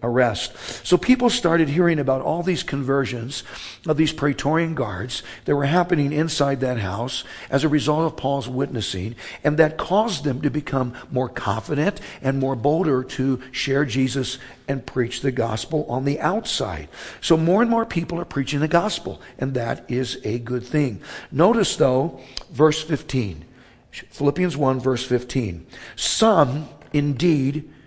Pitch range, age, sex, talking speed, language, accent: 125-165 Hz, 60-79, male, 155 wpm, English, American